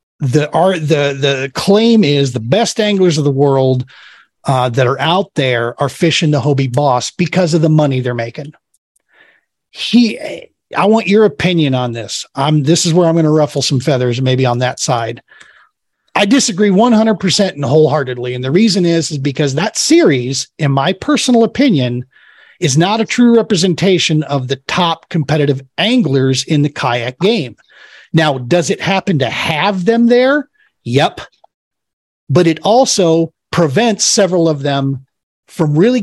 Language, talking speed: English, 165 wpm